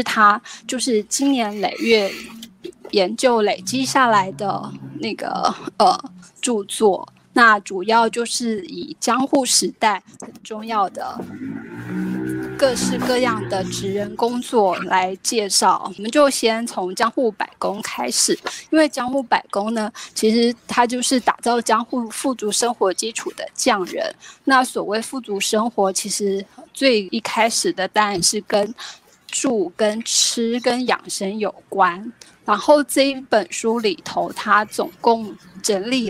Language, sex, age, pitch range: Chinese, female, 20-39, 205-250 Hz